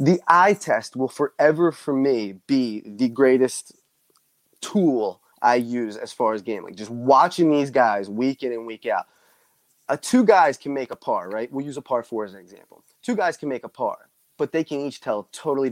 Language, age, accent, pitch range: English, 20-39, American, 115-150 Hz